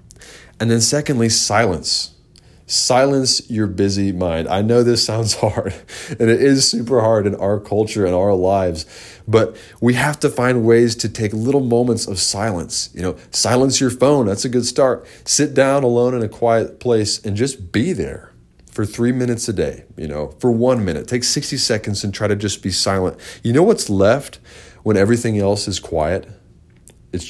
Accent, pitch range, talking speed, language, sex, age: American, 95-125 Hz, 185 wpm, English, male, 30-49